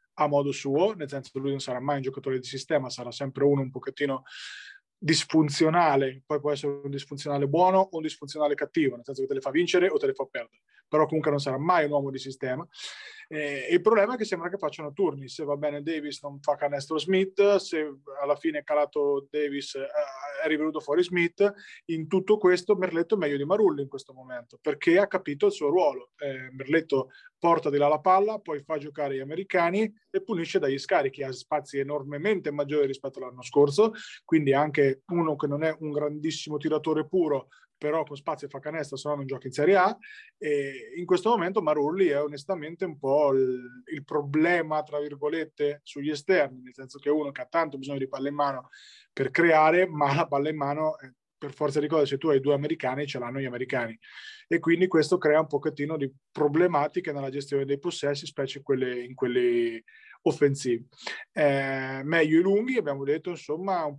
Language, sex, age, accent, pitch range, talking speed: Italian, male, 20-39, native, 140-175 Hz, 205 wpm